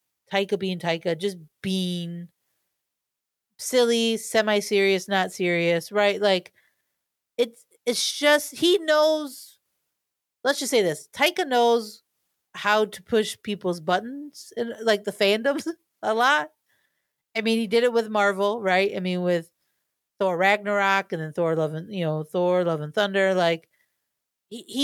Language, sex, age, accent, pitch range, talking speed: English, female, 40-59, American, 185-240 Hz, 145 wpm